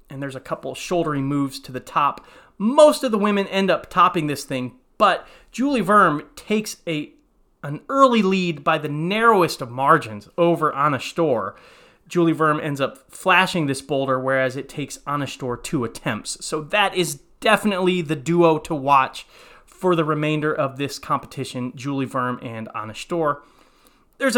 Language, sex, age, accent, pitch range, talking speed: English, male, 30-49, American, 145-200 Hz, 165 wpm